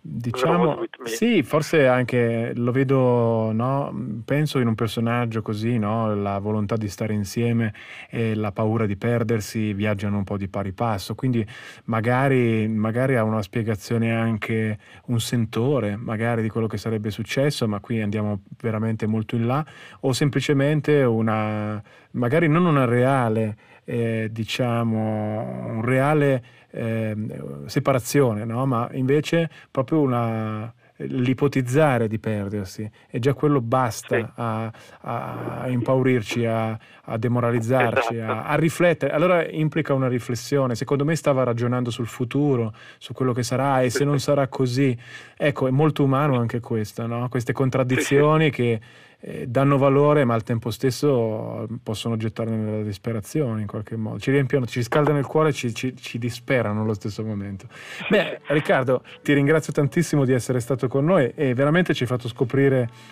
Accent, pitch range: native, 110-135 Hz